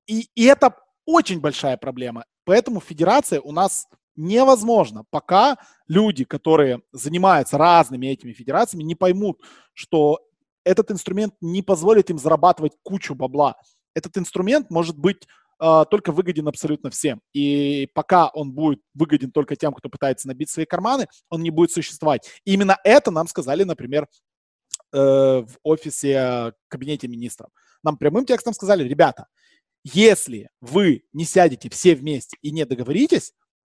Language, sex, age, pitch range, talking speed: Russian, male, 20-39, 145-195 Hz, 140 wpm